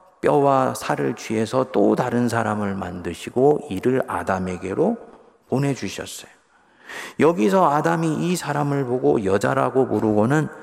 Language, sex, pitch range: Korean, male, 135-220 Hz